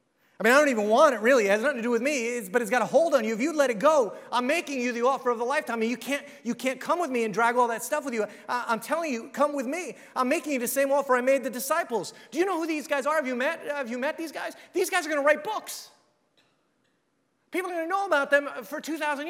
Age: 30-49